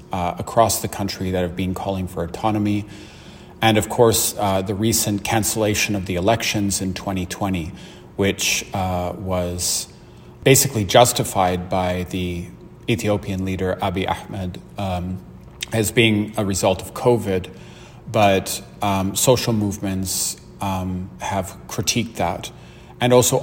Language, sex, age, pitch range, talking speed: English, male, 30-49, 95-110 Hz, 130 wpm